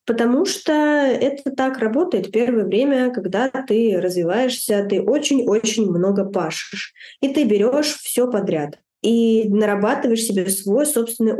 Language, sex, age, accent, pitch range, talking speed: Russian, female, 20-39, native, 190-235 Hz, 125 wpm